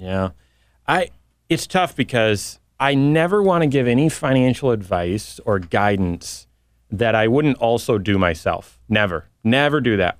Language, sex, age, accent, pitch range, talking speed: English, male, 30-49, American, 100-145 Hz, 145 wpm